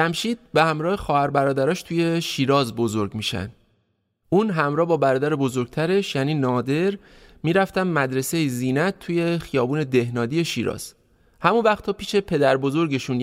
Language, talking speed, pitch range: Persian, 125 wpm, 130-170 Hz